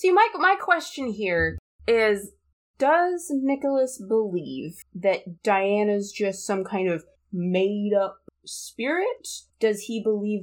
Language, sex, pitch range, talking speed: English, female, 175-230 Hz, 120 wpm